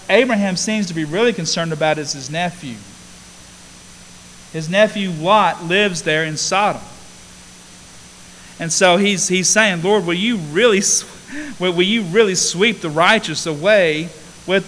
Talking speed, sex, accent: 140 wpm, male, American